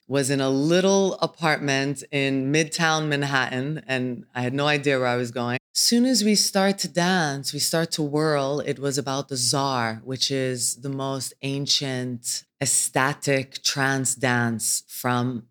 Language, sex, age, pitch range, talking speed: English, female, 20-39, 120-150 Hz, 160 wpm